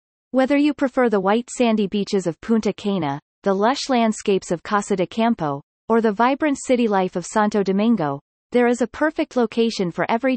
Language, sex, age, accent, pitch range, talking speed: English, female, 30-49, American, 190-235 Hz, 185 wpm